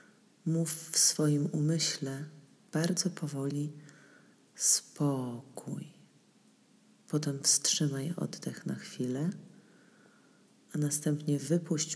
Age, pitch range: 40-59, 140-185 Hz